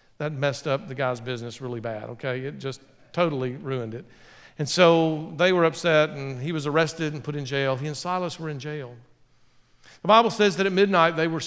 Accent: American